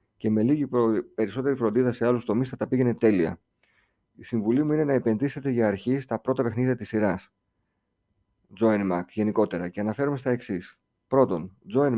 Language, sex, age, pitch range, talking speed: Greek, male, 50-69, 105-135 Hz, 170 wpm